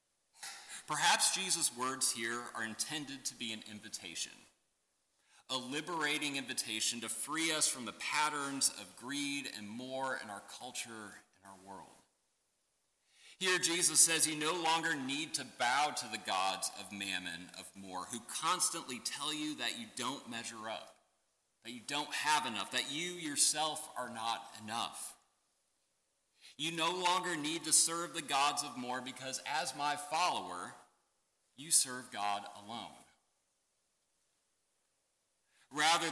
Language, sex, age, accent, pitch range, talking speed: English, male, 40-59, American, 120-155 Hz, 140 wpm